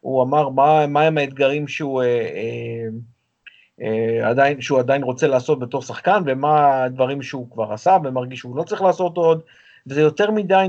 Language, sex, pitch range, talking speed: Hebrew, male, 125-155 Hz, 175 wpm